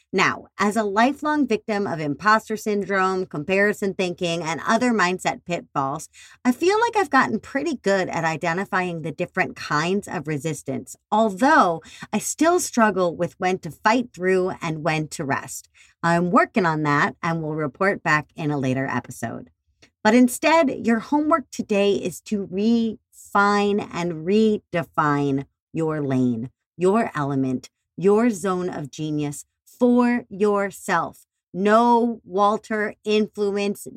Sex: female